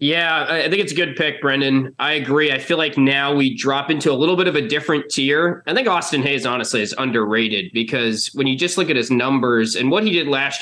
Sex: male